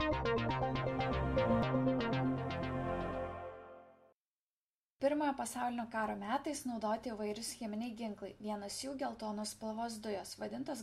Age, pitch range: 20-39, 205-255 Hz